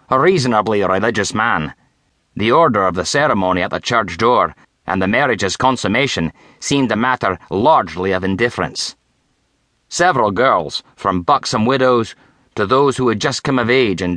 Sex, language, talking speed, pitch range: male, English, 155 wpm, 85-125 Hz